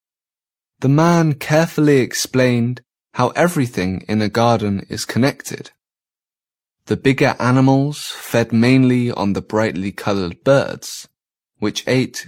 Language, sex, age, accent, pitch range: Chinese, male, 20-39, British, 110-145 Hz